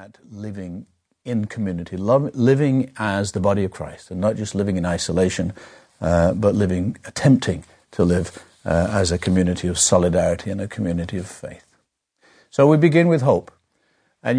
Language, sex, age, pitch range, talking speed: English, male, 60-79, 100-135 Hz, 165 wpm